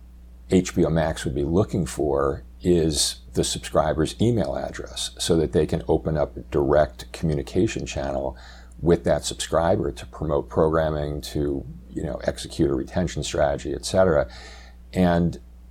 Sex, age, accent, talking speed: male, 50-69, American, 140 wpm